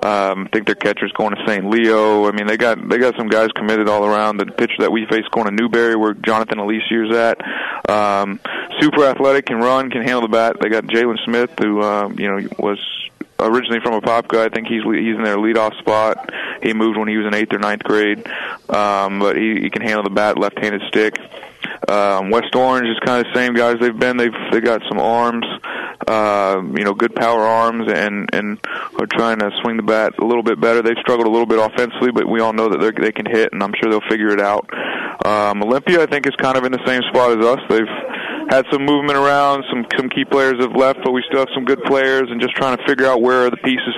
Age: 30-49